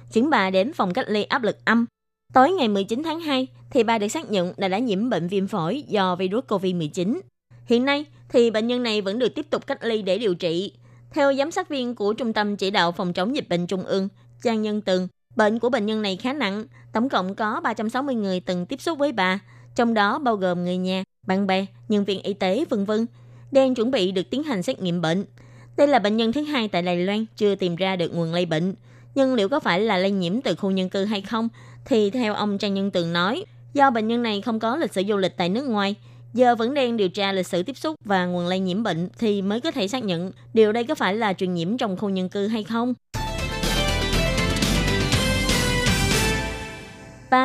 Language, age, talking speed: Vietnamese, 20-39, 230 wpm